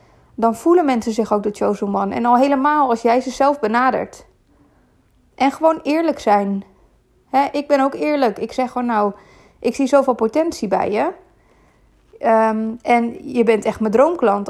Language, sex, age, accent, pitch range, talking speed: Dutch, female, 20-39, Dutch, 215-250 Hz, 165 wpm